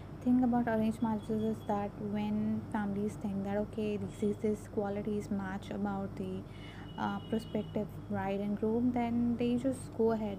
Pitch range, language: 185-220 Hz, English